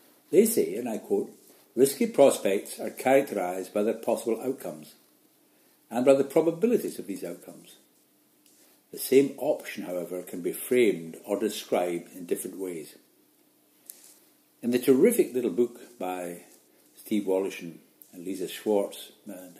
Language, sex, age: English, male, 60-79